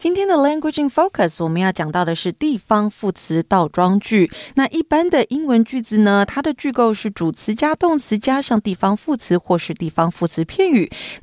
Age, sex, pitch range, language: 30-49, female, 185-300 Hz, Chinese